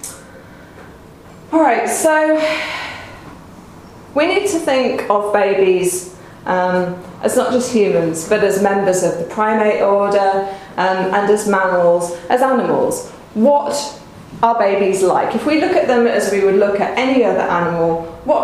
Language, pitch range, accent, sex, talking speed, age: English, 185-245 Hz, British, female, 145 wpm, 30-49